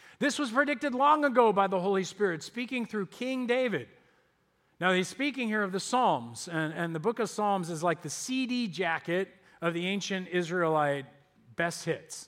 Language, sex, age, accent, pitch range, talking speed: English, male, 40-59, American, 170-225 Hz, 180 wpm